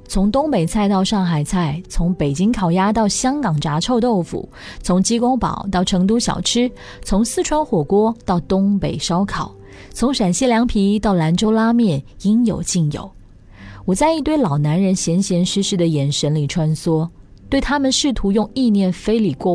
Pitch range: 160-225 Hz